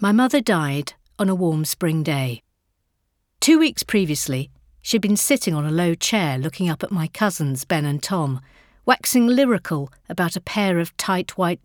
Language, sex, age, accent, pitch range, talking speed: English, female, 50-69, British, 145-210 Hz, 175 wpm